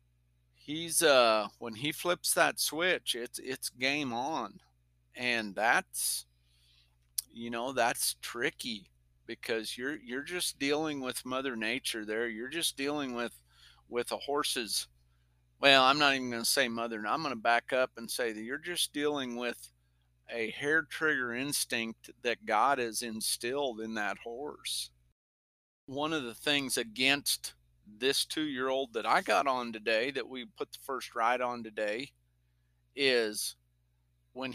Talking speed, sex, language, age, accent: 150 wpm, male, English, 50-69, American